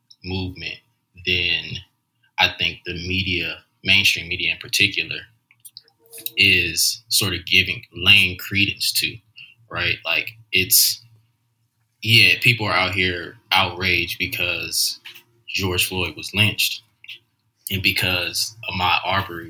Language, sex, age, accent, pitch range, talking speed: English, male, 20-39, American, 90-120 Hz, 110 wpm